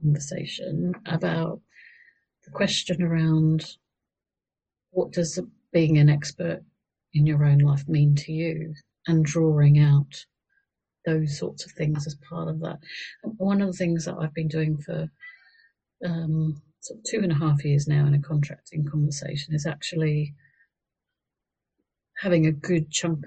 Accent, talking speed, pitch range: British, 145 wpm, 150-180 Hz